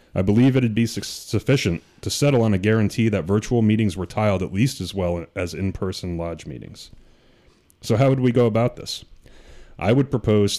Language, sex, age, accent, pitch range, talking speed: English, male, 30-49, American, 90-115 Hz, 195 wpm